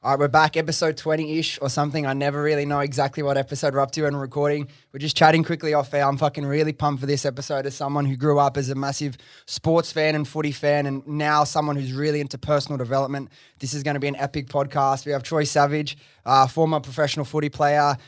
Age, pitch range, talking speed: 20-39, 135-150 Hz, 235 wpm